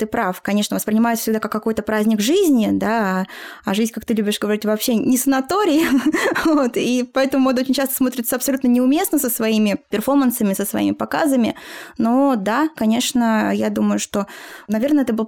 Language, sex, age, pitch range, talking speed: Russian, female, 20-39, 200-255 Hz, 170 wpm